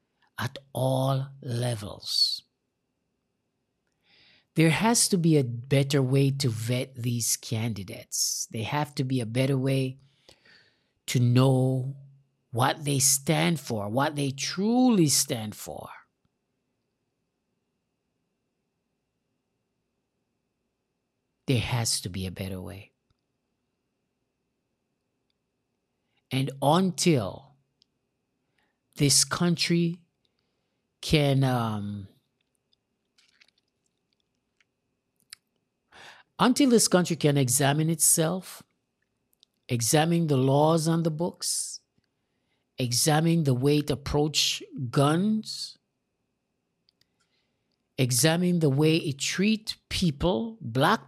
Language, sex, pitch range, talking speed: English, male, 130-165 Hz, 80 wpm